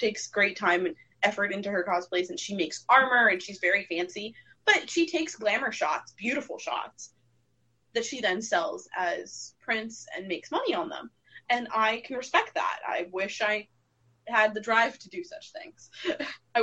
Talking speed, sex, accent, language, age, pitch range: 180 wpm, female, American, English, 20-39, 180-235 Hz